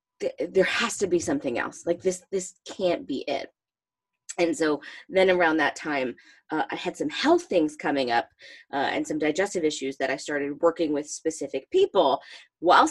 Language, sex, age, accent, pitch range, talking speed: English, female, 20-39, American, 155-200 Hz, 180 wpm